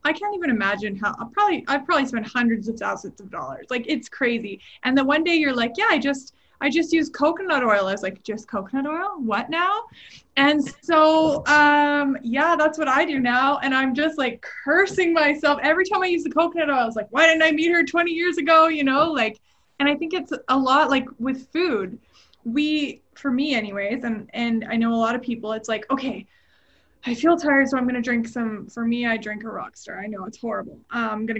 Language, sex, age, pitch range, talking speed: English, female, 20-39, 225-300 Hz, 230 wpm